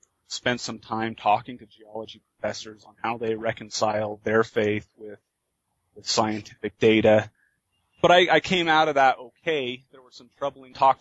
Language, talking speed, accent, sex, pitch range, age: English, 165 wpm, American, male, 110-125 Hz, 30-49